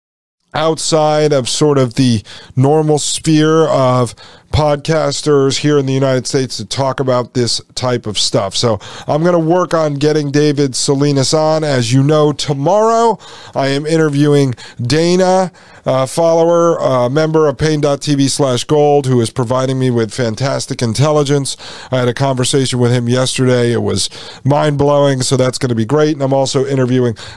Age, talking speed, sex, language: 40-59, 165 wpm, male, English